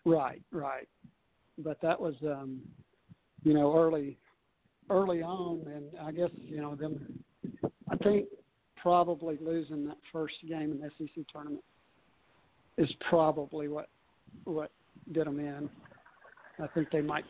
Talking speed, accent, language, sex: 135 wpm, American, English, male